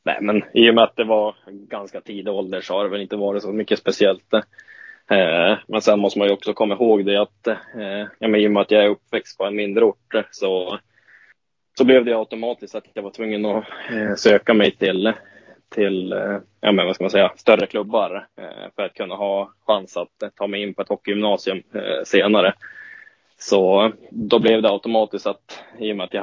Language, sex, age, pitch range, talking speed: Swedish, male, 20-39, 100-110 Hz, 215 wpm